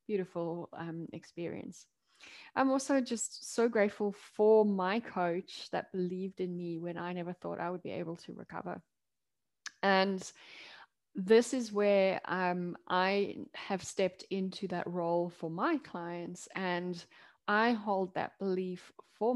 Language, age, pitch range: English, 10-29, 180-225 Hz